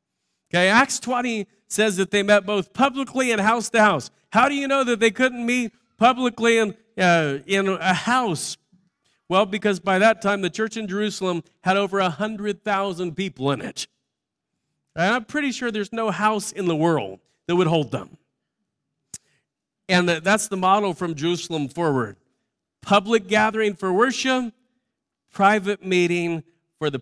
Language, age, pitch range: English, 40-59, 170-220 Hz